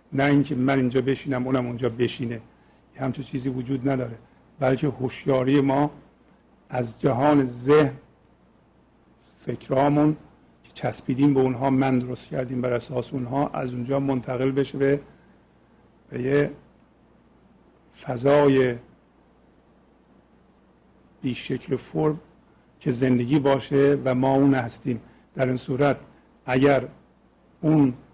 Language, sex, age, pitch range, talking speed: Persian, male, 50-69, 130-145 Hz, 105 wpm